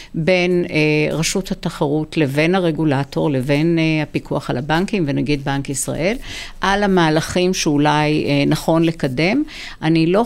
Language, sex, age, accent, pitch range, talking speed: Hebrew, female, 50-69, native, 150-185 Hz, 130 wpm